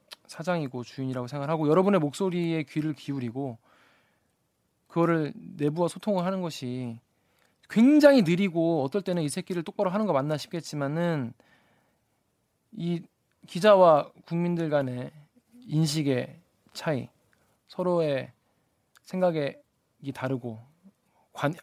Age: 20-39